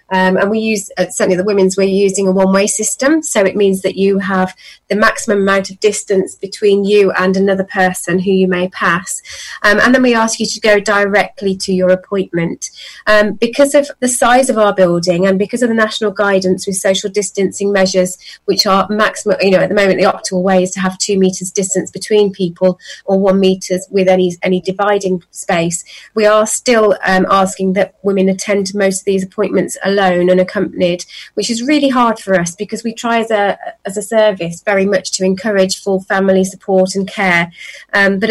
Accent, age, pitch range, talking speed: British, 30-49, 185-210 Hz, 205 wpm